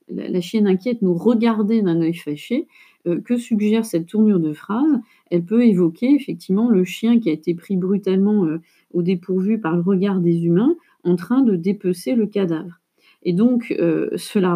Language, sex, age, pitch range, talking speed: French, female, 40-59, 175-230 Hz, 175 wpm